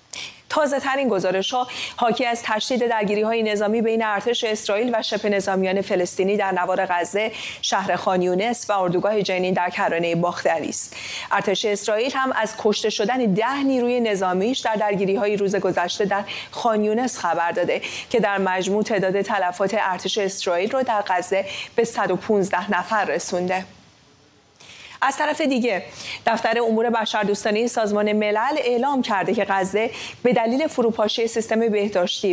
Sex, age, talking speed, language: female, 40-59, 150 wpm, English